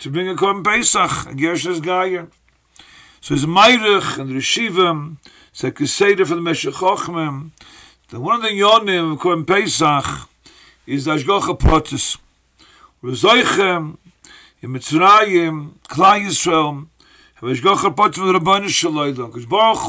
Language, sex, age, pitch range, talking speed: English, male, 50-69, 145-195 Hz, 135 wpm